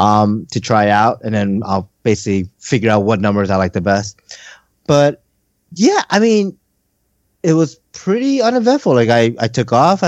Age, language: 30-49, English